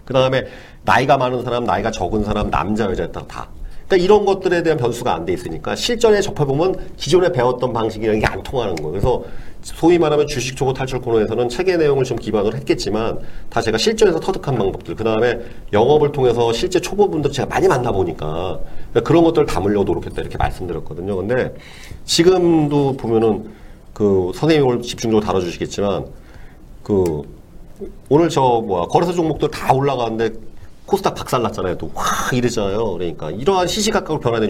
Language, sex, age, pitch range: Korean, male, 40-59, 105-150 Hz